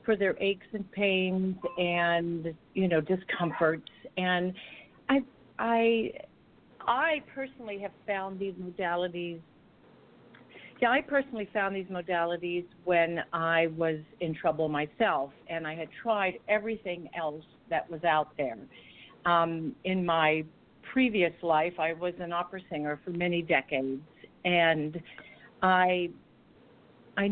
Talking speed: 125 wpm